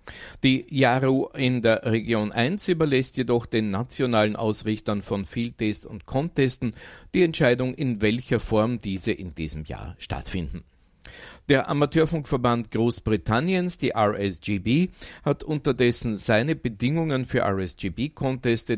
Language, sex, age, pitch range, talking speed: German, male, 50-69, 100-130 Hz, 115 wpm